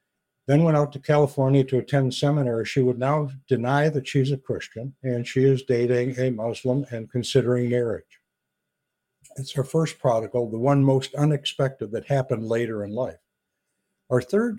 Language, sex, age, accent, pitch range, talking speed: English, male, 60-79, American, 115-135 Hz, 165 wpm